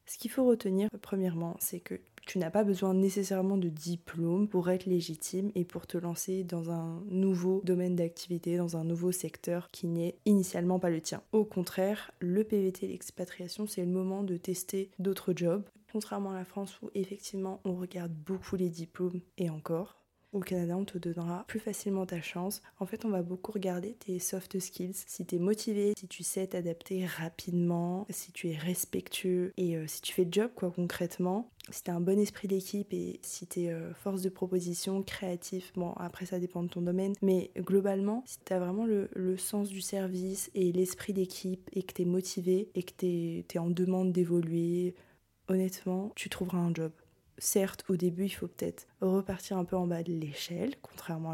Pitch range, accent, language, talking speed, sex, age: 175-195 Hz, French, French, 190 wpm, female, 20-39